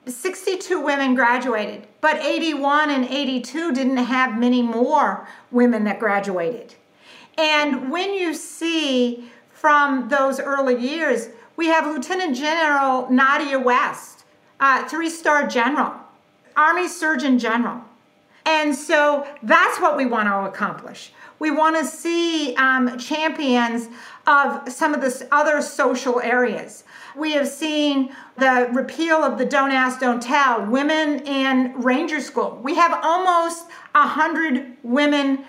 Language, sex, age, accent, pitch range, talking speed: English, female, 50-69, American, 250-310 Hz, 125 wpm